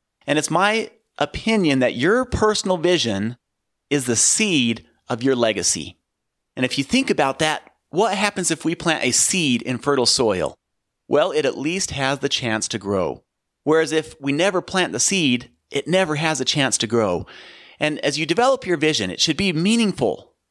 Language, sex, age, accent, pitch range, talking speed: English, male, 40-59, American, 135-185 Hz, 185 wpm